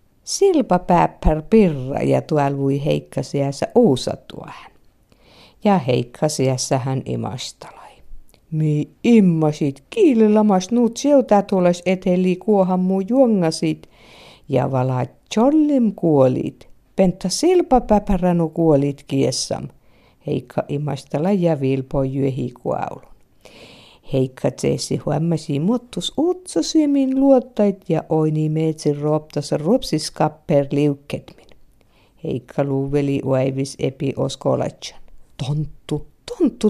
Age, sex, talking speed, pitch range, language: 50-69, female, 85 wpm, 145-205 Hz, Czech